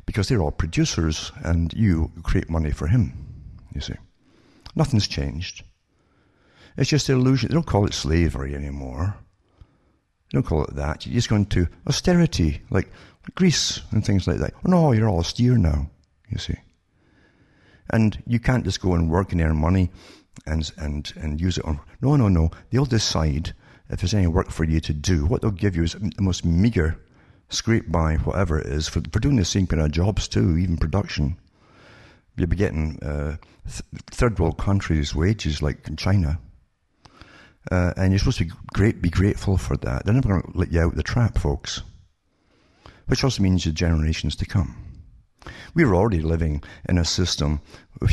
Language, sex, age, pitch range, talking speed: English, male, 60-79, 80-105 Hz, 185 wpm